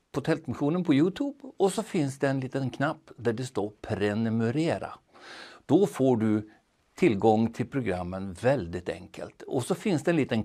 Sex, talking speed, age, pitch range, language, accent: male, 160 wpm, 60-79, 105-150 Hz, Swedish, native